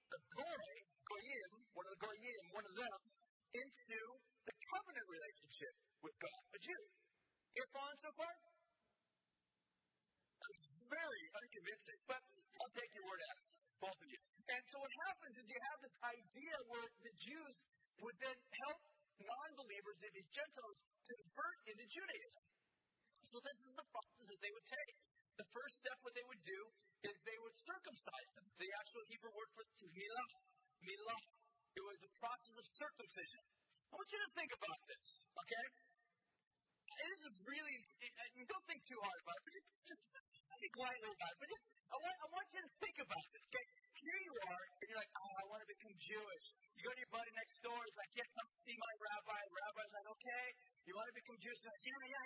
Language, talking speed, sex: English, 195 wpm, male